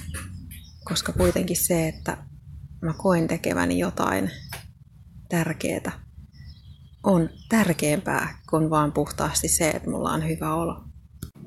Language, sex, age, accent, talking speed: Finnish, female, 20-39, native, 105 wpm